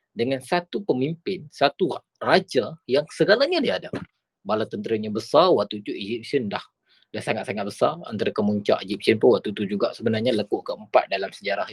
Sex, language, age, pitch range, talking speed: male, Malay, 20-39, 130-180 Hz, 150 wpm